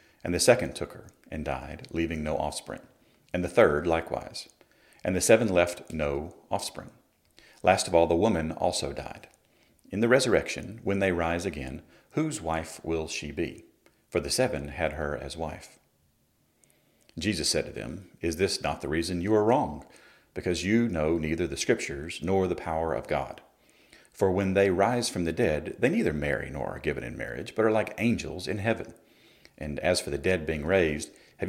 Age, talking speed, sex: 40-59, 185 wpm, male